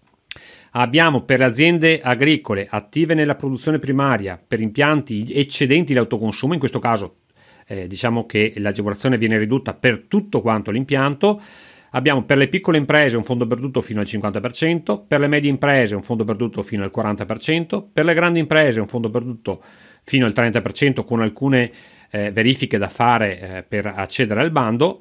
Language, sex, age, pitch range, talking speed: Italian, male, 40-59, 105-150 Hz, 165 wpm